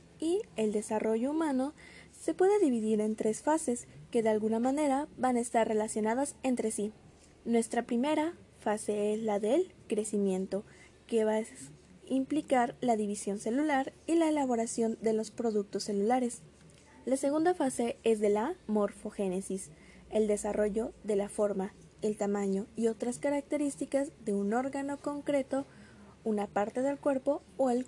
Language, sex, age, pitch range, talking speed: Spanish, female, 20-39, 210-280 Hz, 145 wpm